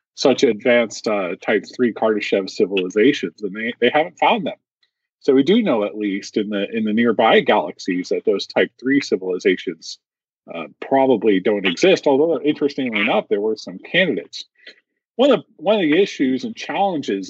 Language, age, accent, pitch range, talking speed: English, 40-59, American, 105-170 Hz, 170 wpm